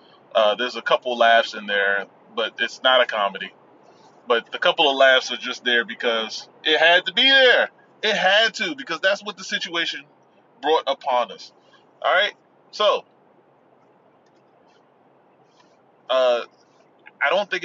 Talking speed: 150 wpm